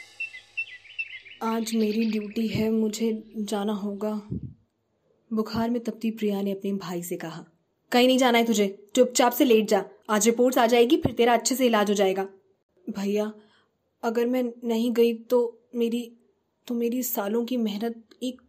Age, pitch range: 10-29, 210-275 Hz